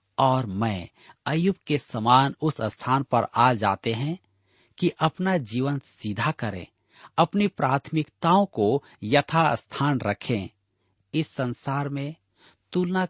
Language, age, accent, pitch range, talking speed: Hindi, 50-69, native, 105-155 Hz, 120 wpm